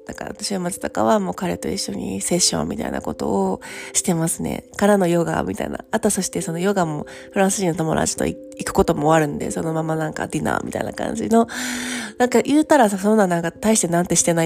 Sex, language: female, Japanese